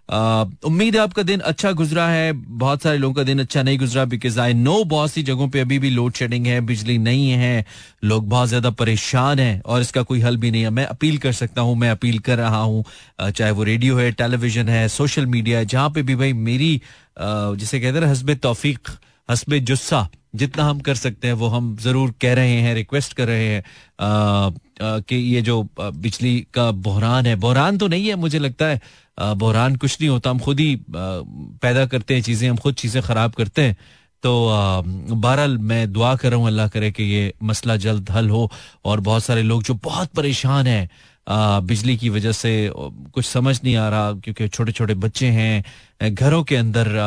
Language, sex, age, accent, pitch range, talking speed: Hindi, male, 30-49, native, 105-130 Hz, 205 wpm